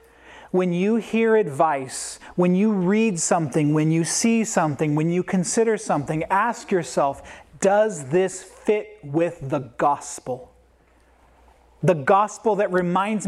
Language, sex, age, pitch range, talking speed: English, male, 40-59, 150-210 Hz, 125 wpm